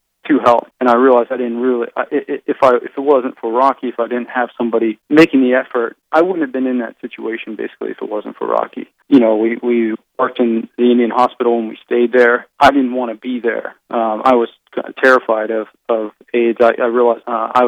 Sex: male